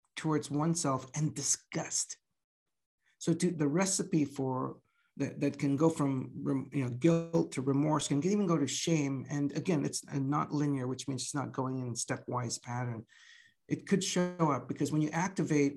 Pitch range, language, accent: 135-160 Hz, English, American